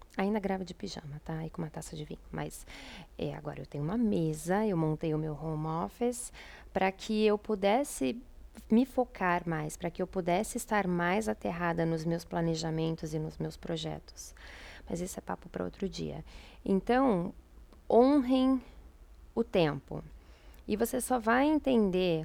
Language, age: Portuguese, 20-39